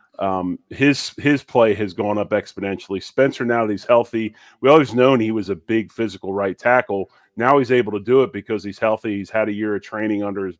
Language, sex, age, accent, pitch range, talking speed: English, male, 30-49, American, 100-115 Hz, 225 wpm